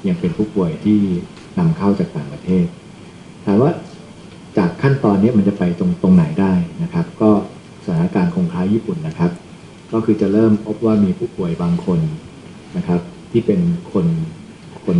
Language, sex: Thai, male